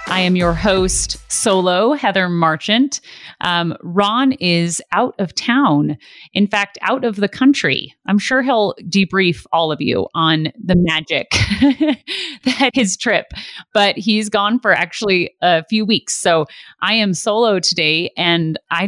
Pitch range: 165-215 Hz